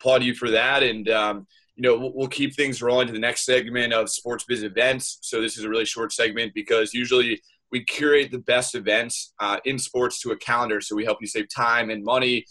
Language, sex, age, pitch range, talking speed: English, male, 20-39, 115-145 Hz, 230 wpm